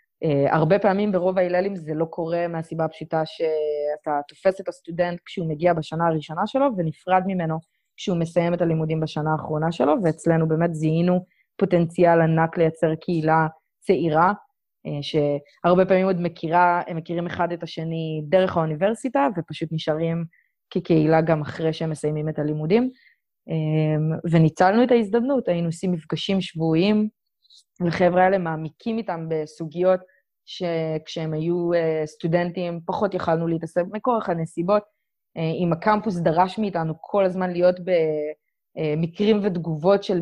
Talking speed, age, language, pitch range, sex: 125 wpm, 20-39, Hebrew, 160-190 Hz, female